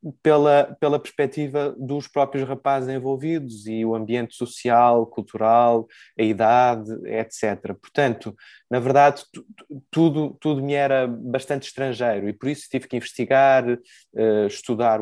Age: 20-39